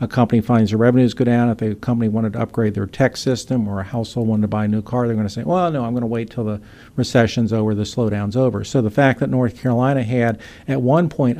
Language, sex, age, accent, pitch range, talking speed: English, male, 50-69, American, 110-135 Hz, 275 wpm